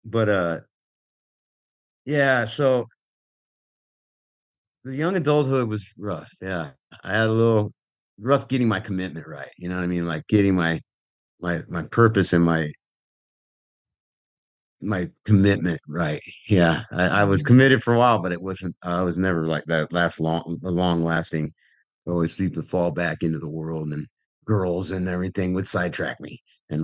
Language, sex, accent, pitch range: English, male, American, 85-110 Hz